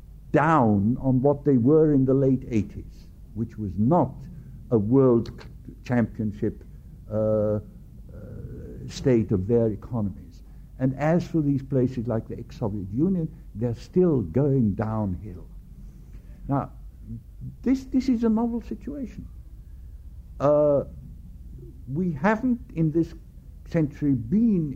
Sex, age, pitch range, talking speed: male, 60-79, 105-155 Hz, 120 wpm